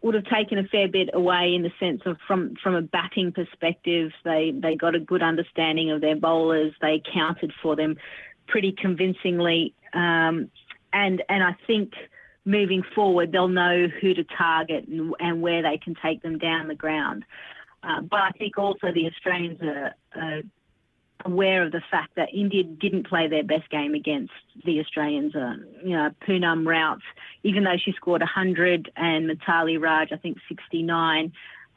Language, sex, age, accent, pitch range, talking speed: English, female, 30-49, Australian, 160-185 Hz, 175 wpm